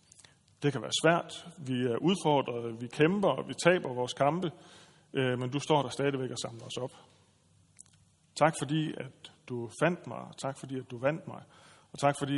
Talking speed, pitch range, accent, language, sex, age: 190 wpm, 130-170 Hz, native, Danish, male, 30-49